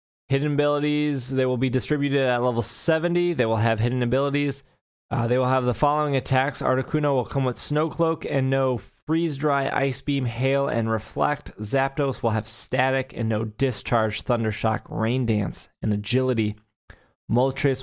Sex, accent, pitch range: male, American, 110-135 Hz